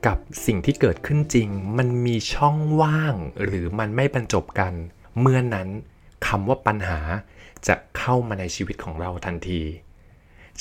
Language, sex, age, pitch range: Thai, male, 20-39, 95-125 Hz